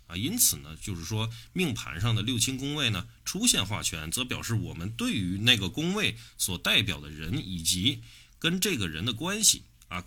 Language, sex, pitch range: Chinese, male, 80-115 Hz